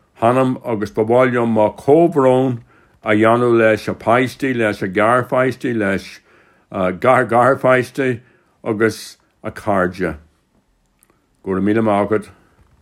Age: 60-79